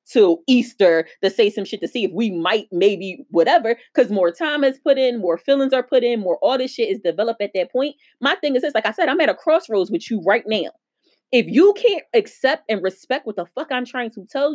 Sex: female